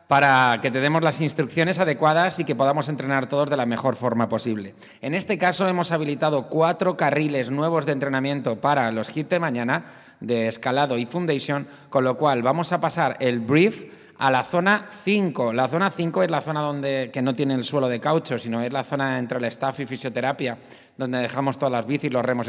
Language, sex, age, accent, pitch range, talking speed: Spanish, male, 30-49, Spanish, 130-165 Hz, 210 wpm